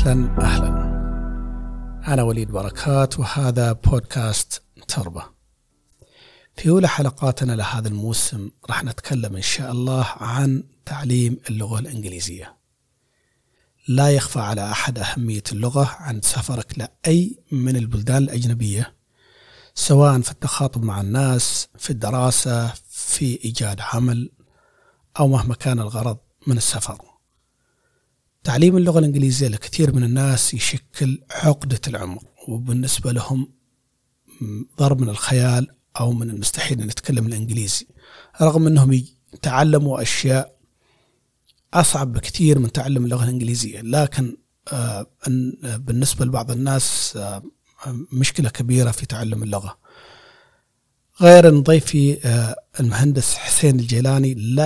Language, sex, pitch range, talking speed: Arabic, male, 115-135 Hz, 105 wpm